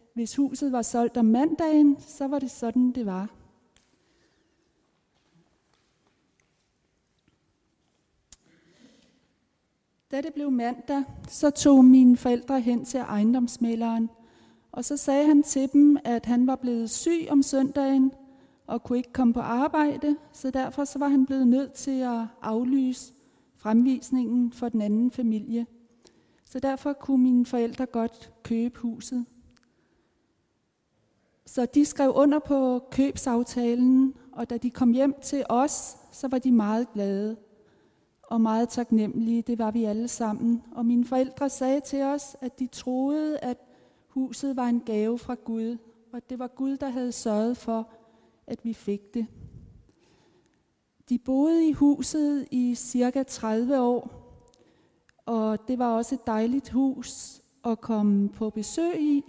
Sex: female